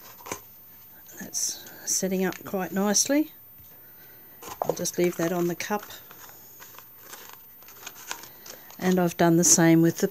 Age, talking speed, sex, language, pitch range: 50-69, 105 wpm, female, English, 175-205 Hz